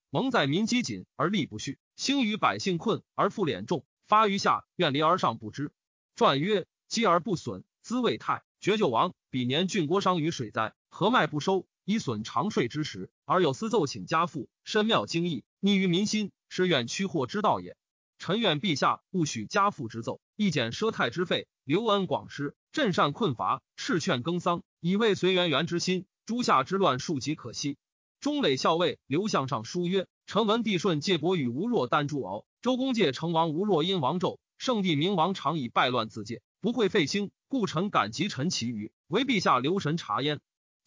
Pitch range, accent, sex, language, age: 150-205 Hz, native, male, Chinese, 30-49